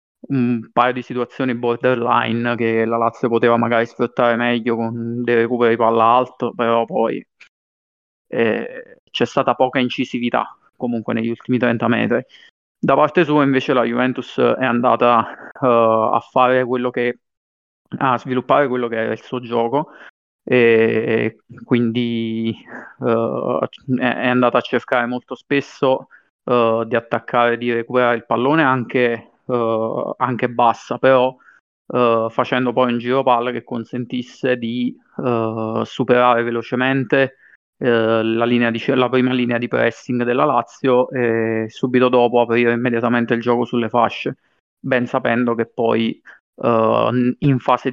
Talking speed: 135 wpm